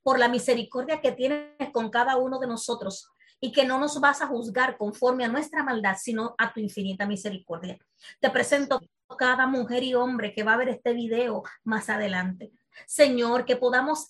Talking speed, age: 185 wpm, 30-49